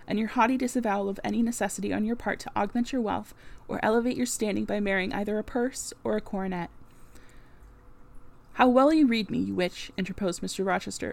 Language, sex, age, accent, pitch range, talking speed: English, female, 20-39, American, 190-240 Hz, 195 wpm